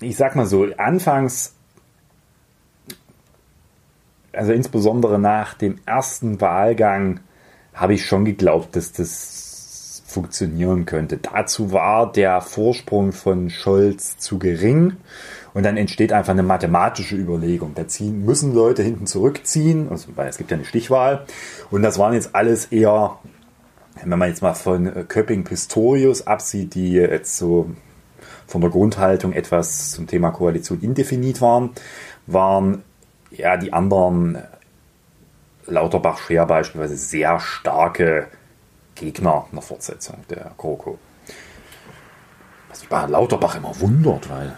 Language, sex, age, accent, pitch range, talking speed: German, male, 30-49, German, 90-115 Hz, 125 wpm